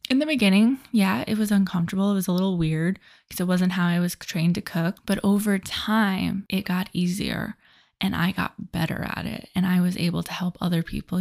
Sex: female